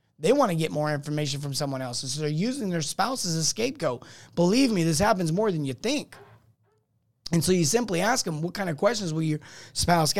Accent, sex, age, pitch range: American, male, 30-49, 130-175 Hz